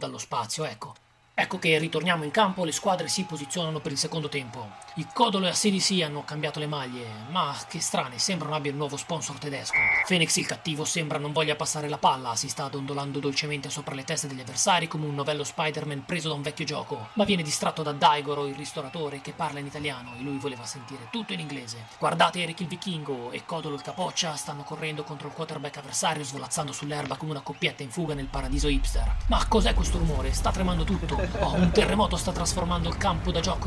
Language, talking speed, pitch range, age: Italian, 215 wpm, 140-160 Hz, 30-49